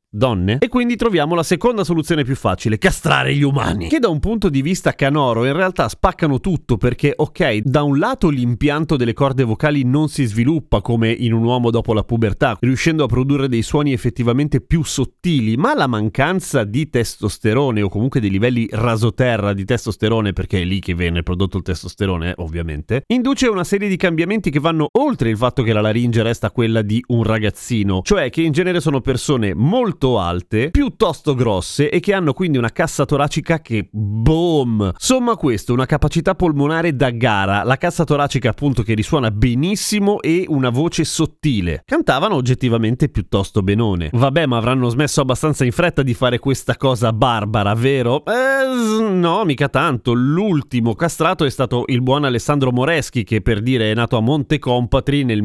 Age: 30-49